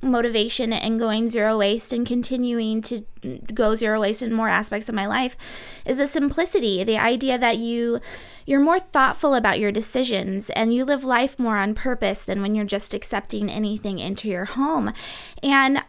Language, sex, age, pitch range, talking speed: English, female, 20-39, 215-260 Hz, 180 wpm